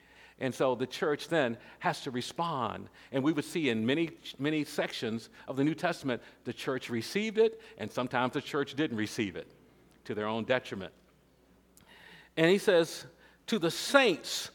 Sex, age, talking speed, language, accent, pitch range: male, 50-69, 170 wpm, English, American, 130-190 Hz